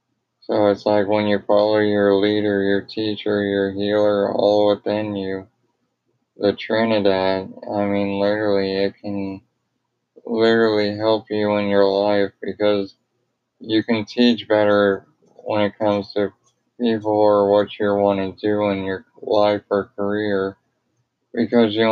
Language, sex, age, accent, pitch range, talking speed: English, male, 20-39, American, 100-110 Hz, 140 wpm